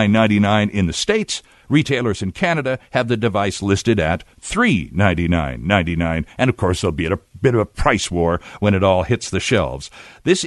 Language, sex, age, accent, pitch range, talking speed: English, male, 60-79, American, 100-140 Hz, 180 wpm